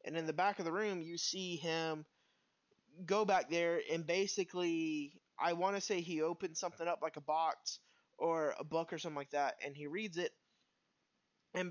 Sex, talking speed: male, 195 wpm